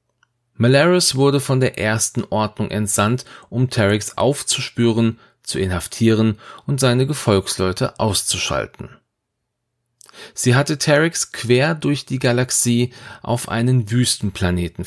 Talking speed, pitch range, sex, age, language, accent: 105 wpm, 105-130 Hz, male, 40-59, German, German